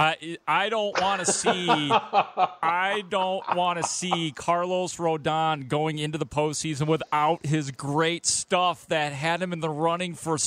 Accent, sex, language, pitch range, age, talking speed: American, male, English, 145-180 Hz, 40-59, 155 wpm